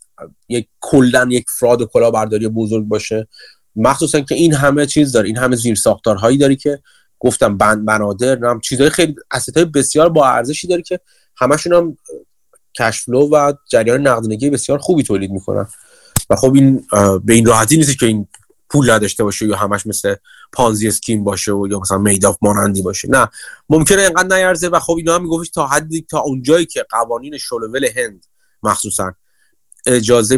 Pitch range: 105-155 Hz